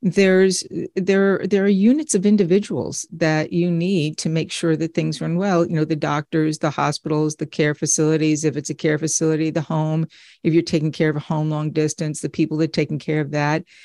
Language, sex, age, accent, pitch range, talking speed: English, female, 50-69, American, 160-200 Hz, 215 wpm